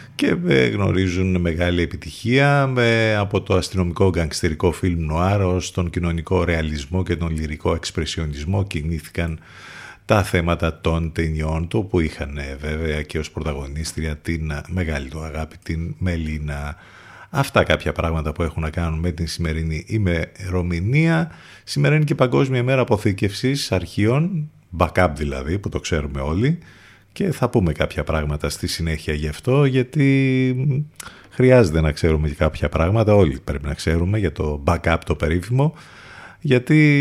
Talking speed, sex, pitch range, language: 140 wpm, male, 80-110 Hz, Greek